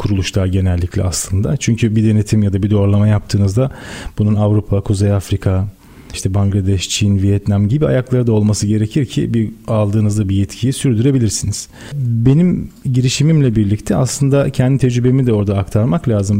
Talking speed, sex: 145 wpm, male